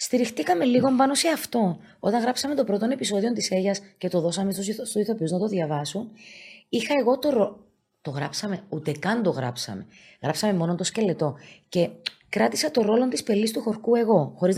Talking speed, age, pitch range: 180 wpm, 20-39, 150-220 Hz